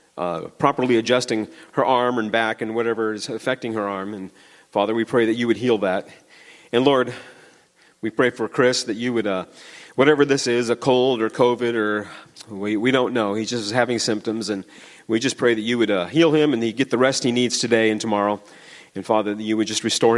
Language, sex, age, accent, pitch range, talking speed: English, male, 40-59, American, 105-125 Hz, 225 wpm